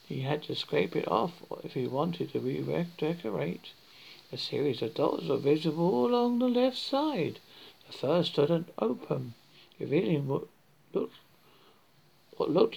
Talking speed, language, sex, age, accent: 130 wpm, English, male, 60-79, British